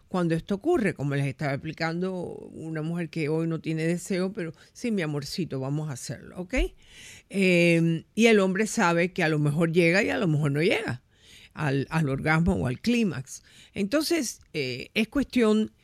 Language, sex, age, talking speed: Spanish, female, 50-69, 180 wpm